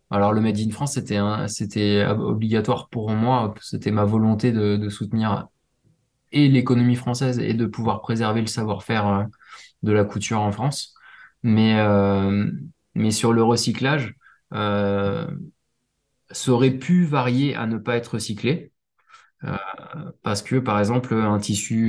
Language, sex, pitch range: French, male, 105-125 Hz